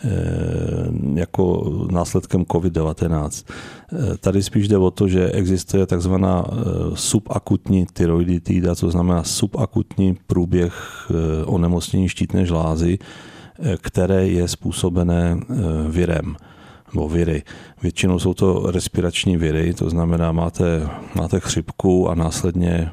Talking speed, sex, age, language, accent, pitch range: 100 wpm, male, 40-59, Czech, native, 85-95 Hz